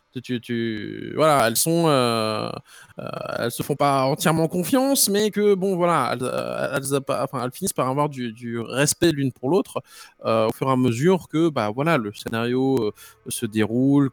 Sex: male